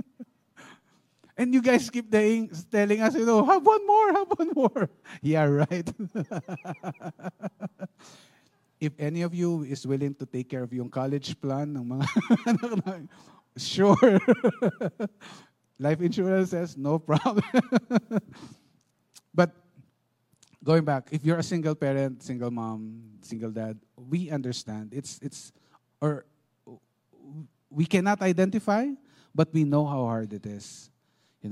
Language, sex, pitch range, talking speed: English, male, 135-190 Hz, 125 wpm